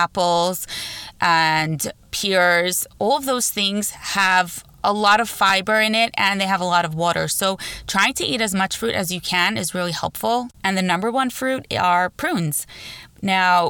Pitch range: 165-200 Hz